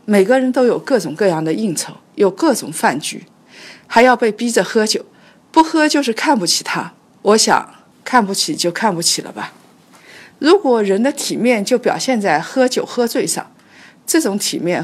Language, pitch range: Chinese, 190-255 Hz